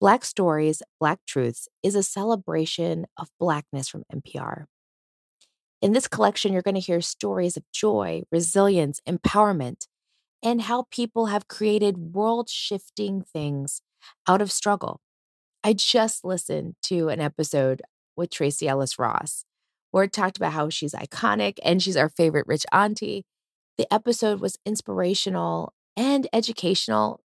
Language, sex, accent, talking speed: English, female, American, 135 wpm